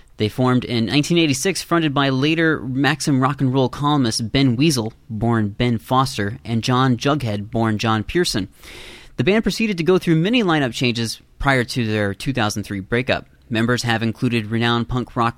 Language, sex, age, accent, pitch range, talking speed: English, male, 30-49, American, 105-140 Hz, 170 wpm